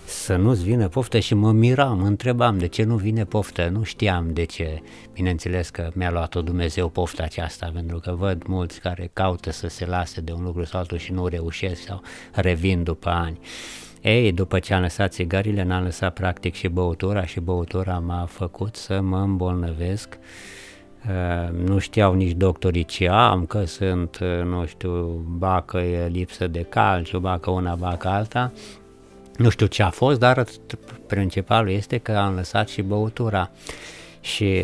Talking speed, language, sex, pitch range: 170 wpm, Romanian, male, 90-110 Hz